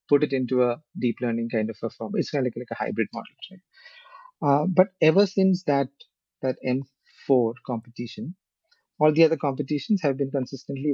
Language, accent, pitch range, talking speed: English, Indian, 120-150 Hz, 185 wpm